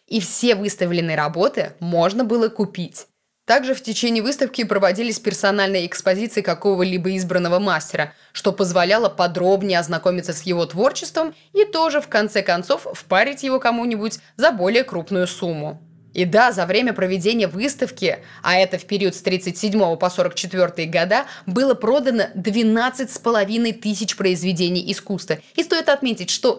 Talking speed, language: 140 wpm, Russian